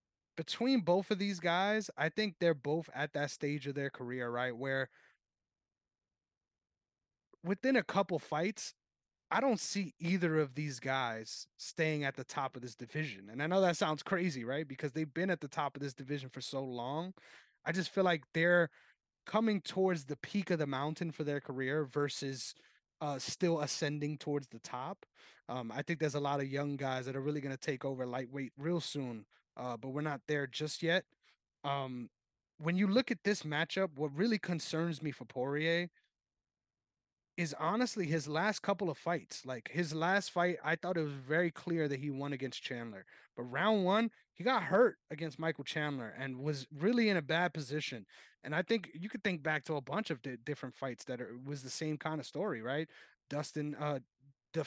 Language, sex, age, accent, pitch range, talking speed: English, male, 20-39, American, 135-175 Hz, 195 wpm